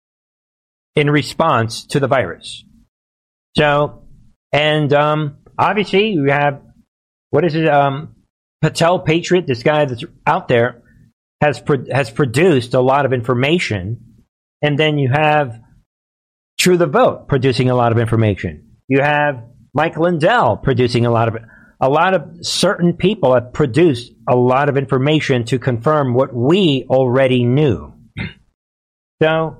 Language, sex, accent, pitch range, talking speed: English, male, American, 125-165 Hz, 140 wpm